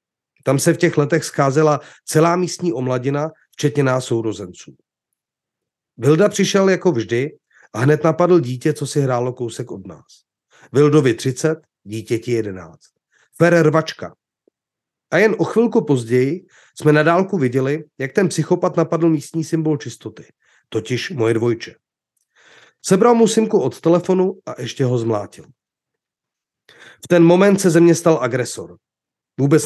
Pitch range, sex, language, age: 125-170 Hz, male, Czech, 30-49